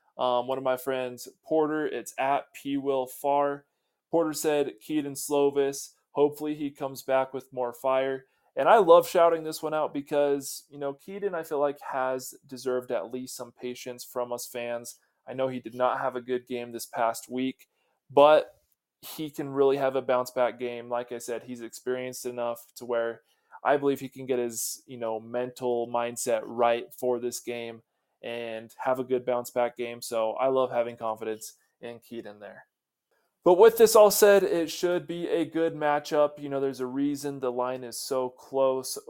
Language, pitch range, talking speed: English, 125-145 Hz, 190 wpm